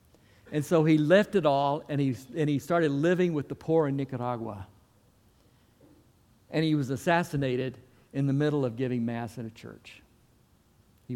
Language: English